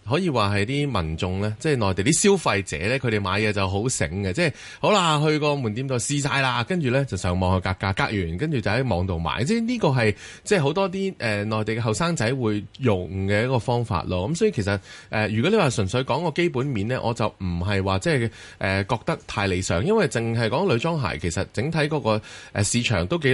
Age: 20-39